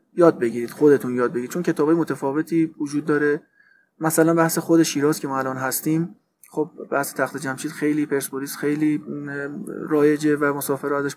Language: Persian